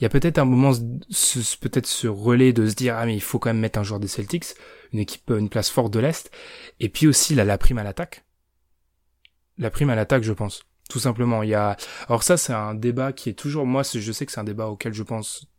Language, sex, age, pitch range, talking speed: French, male, 20-39, 110-135 Hz, 260 wpm